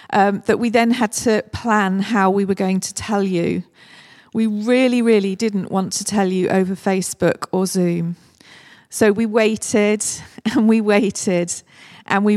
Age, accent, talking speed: 40-59, British, 165 wpm